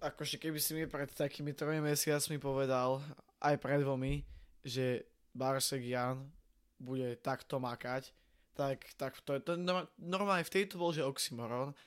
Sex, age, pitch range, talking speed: male, 20-39, 130-155 Hz, 140 wpm